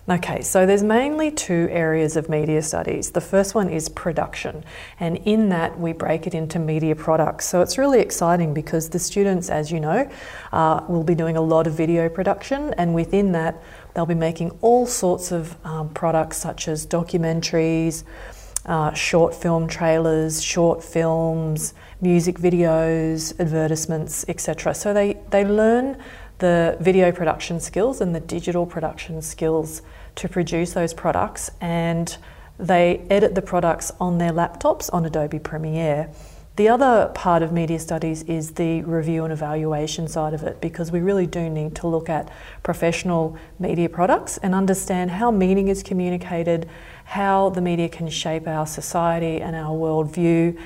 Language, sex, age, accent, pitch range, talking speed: English, female, 30-49, Australian, 160-180 Hz, 160 wpm